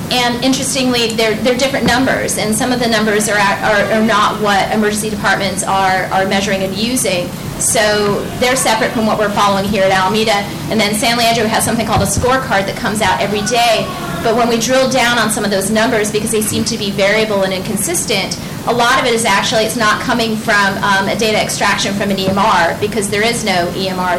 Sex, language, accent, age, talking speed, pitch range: female, English, American, 30-49, 220 wpm, 195-225 Hz